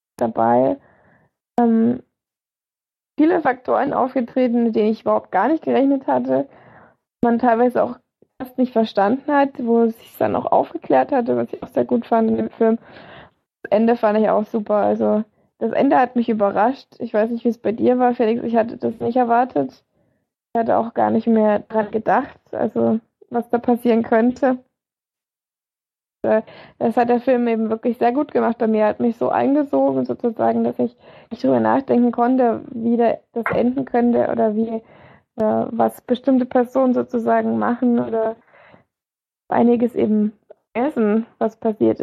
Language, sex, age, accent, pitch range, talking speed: German, female, 20-39, German, 215-245 Hz, 165 wpm